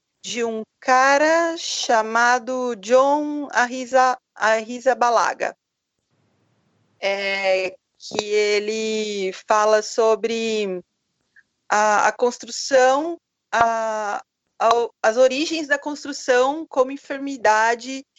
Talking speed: 75 wpm